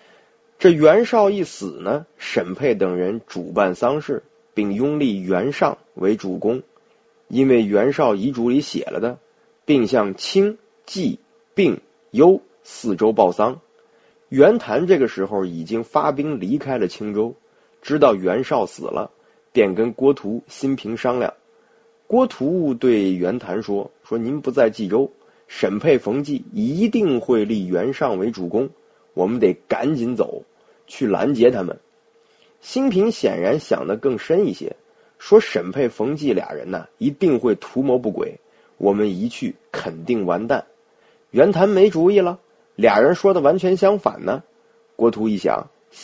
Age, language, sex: 30-49, Chinese, male